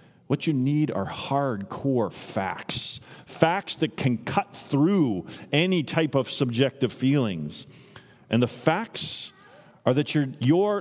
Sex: male